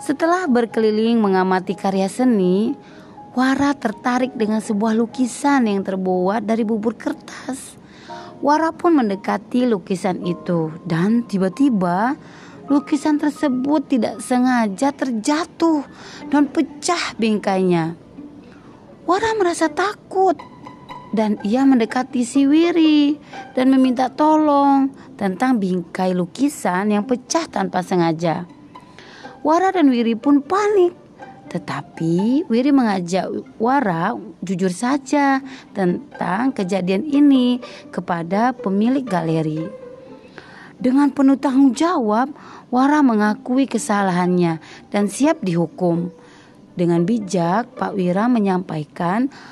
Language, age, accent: Indonesian, 30-49, native